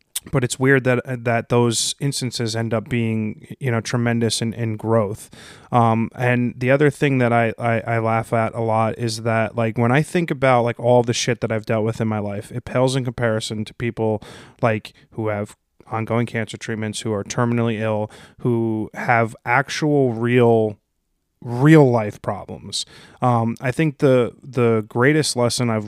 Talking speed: 180 wpm